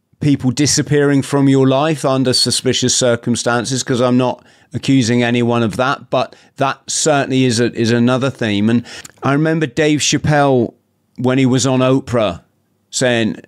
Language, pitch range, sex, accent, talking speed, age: English, 115-135 Hz, male, British, 150 wpm, 40-59